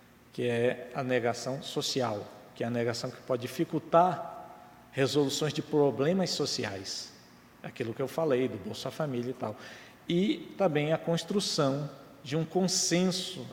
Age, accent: 50-69, Brazilian